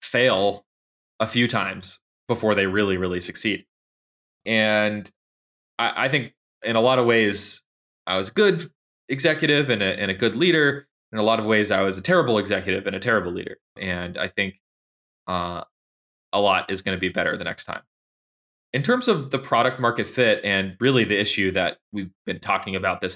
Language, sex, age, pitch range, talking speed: English, male, 20-39, 90-115 Hz, 190 wpm